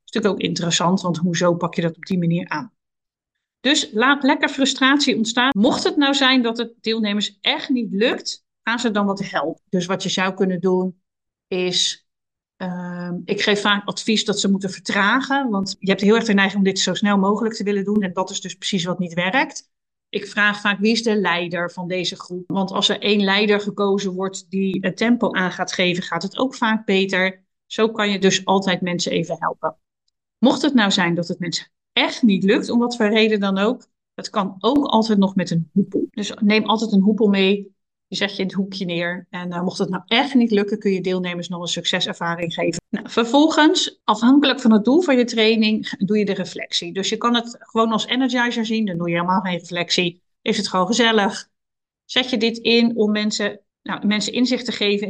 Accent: Dutch